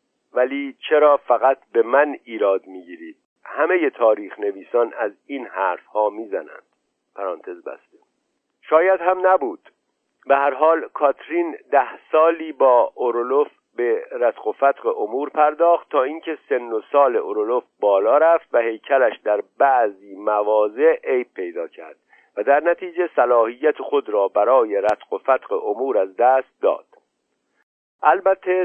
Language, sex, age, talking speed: Persian, male, 50-69, 135 wpm